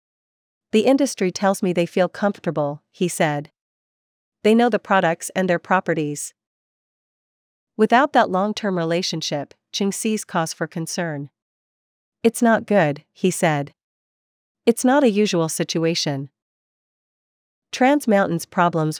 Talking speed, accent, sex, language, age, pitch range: 120 wpm, American, female, English, 40-59, 160-200 Hz